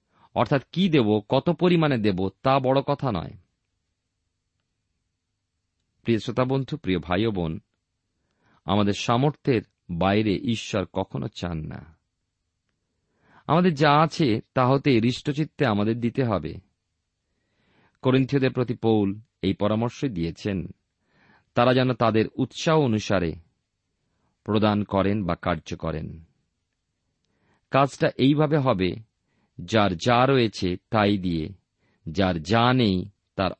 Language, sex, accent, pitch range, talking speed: Bengali, male, native, 90-125 Hz, 105 wpm